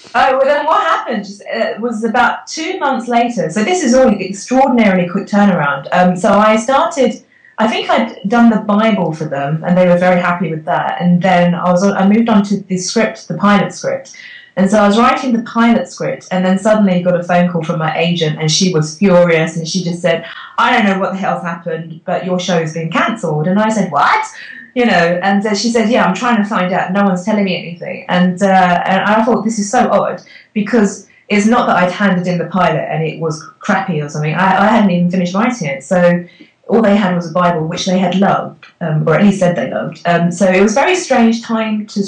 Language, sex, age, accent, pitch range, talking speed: English, female, 30-49, British, 175-220 Hz, 235 wpm